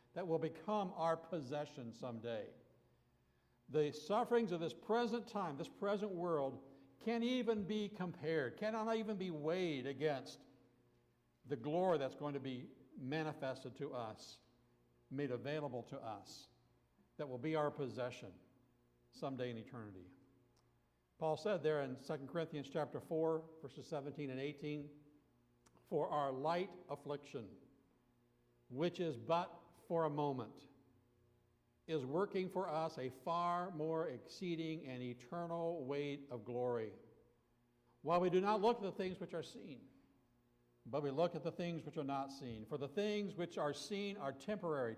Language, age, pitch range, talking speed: English, 60-79, 125-170 Hz, 145 wpm